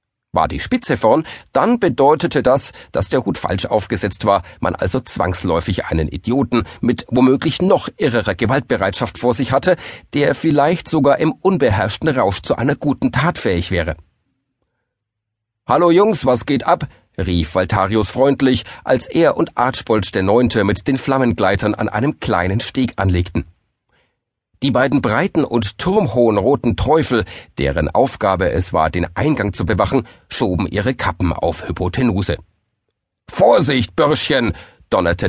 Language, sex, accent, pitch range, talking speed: German, male, German, 95-135 Hz, 140 wpm